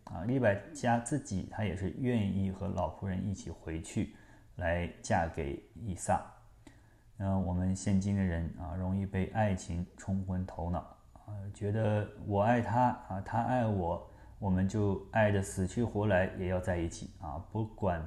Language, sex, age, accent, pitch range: Chinese, male, 20-39, native, 90-105 Hz